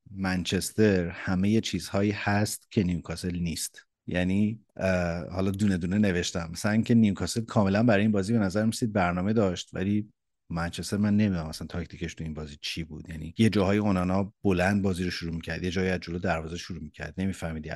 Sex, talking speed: male, 185 wpm